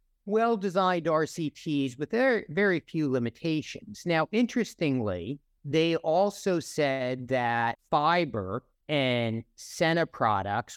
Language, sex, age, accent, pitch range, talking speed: English, male, 50-69, American, 125-175 Hz, 90 wpm